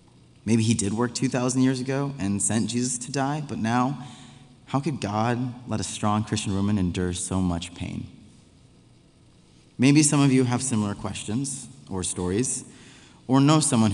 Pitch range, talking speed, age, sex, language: 100-125 Hz, 165 wpm, 20-39, male, English